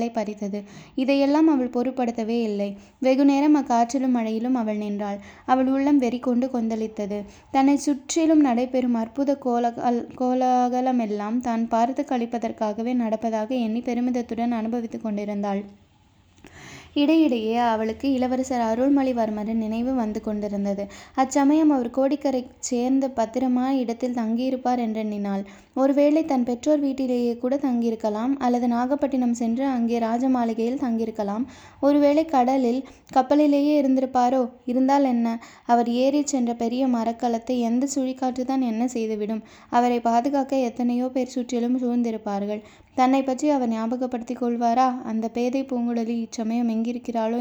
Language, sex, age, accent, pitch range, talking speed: Tamil, female, 20-39, native, 230-260 Hz, 115 wpm